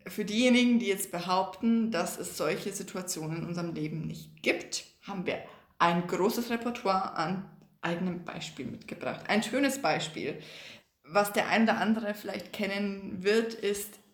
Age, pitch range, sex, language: 20-39, 185-230 Hz, female, German